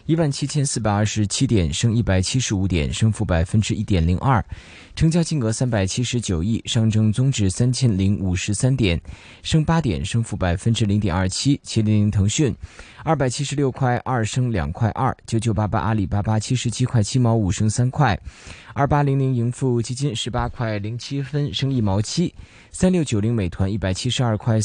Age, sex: 20-39, male